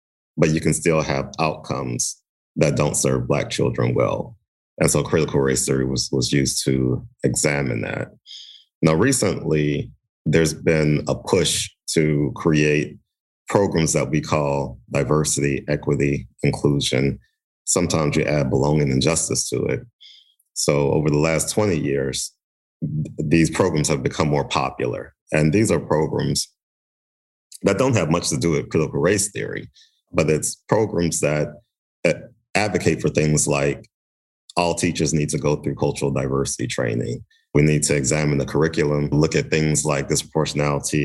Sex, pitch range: male, 70-80 Hz